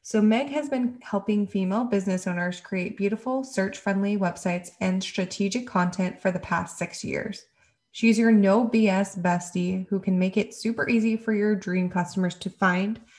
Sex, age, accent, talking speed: female, 20-39, American, 170 wpm